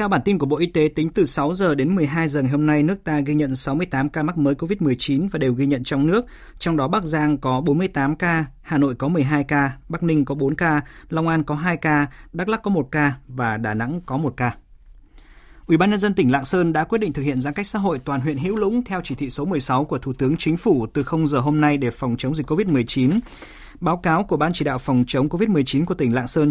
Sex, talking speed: male, 265 wpm